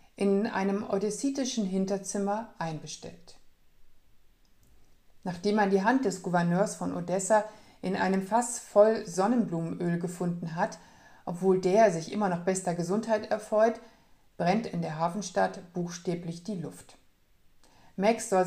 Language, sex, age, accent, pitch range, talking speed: German, female, 60-79, German, 175-215 Hz, 120 wpm